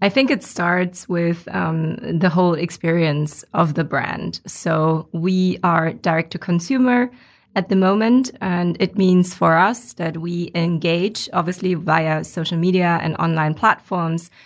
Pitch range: 170-195 Hz